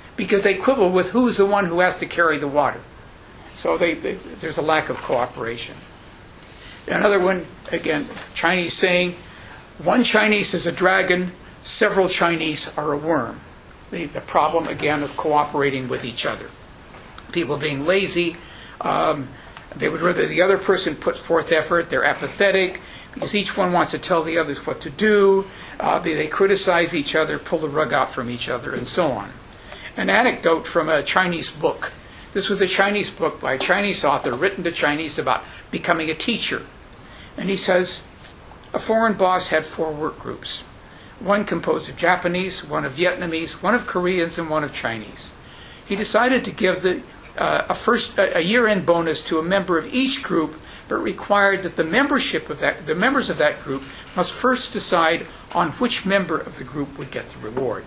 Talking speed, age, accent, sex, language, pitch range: 180 wpm, 60-79, American, male, English, 160-195 Hz